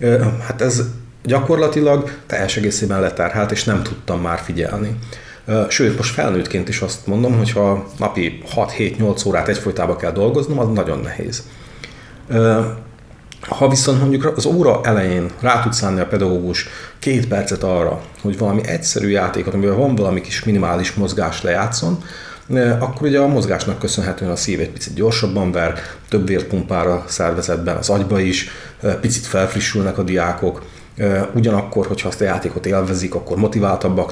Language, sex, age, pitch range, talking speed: Hungarian, male, 40-59, 95-120 Hz, 145 wpm